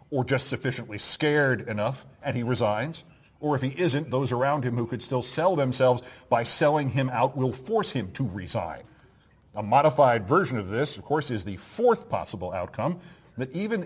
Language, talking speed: English, 185 wpm